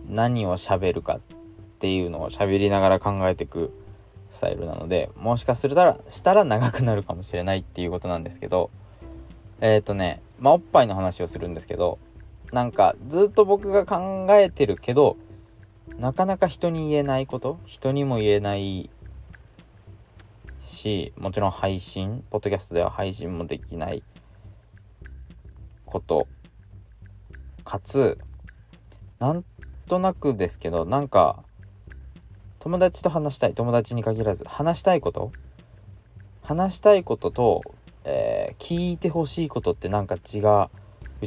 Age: 20-39